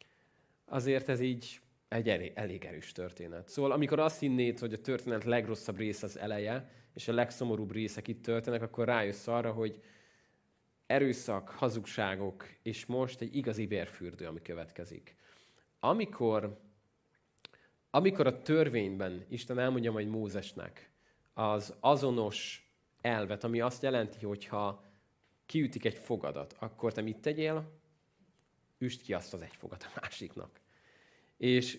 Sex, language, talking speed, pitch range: male, Hungarian, 130 wpm, 100-125 Hz